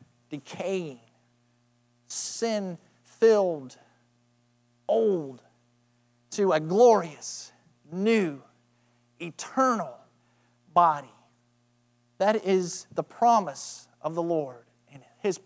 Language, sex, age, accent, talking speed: English, male, 40-59, American, 75 wpm